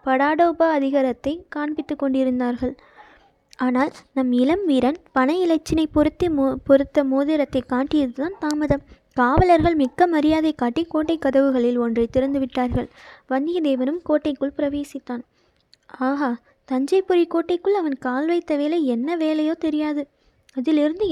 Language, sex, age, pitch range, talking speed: Tamil, female, 20-39, 270-315 Hz, 105 wpm